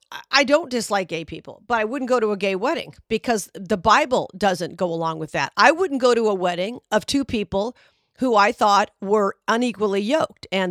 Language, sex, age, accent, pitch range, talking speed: English, female, 50-69, American, 185-230 Hz, 205 wpm